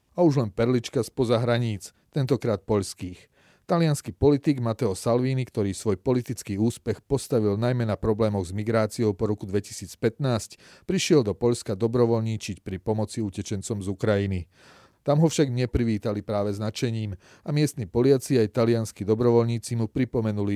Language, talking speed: Slovak, 140 wpm